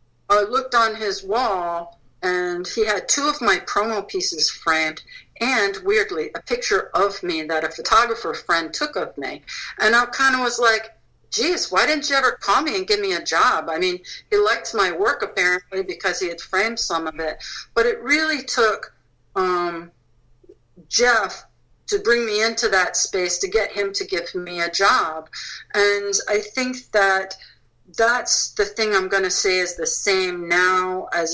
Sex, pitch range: female, 170-255 Hz